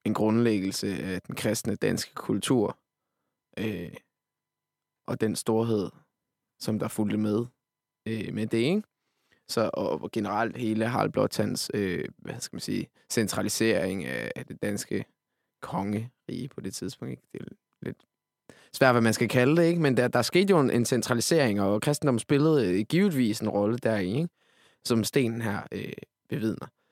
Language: Danish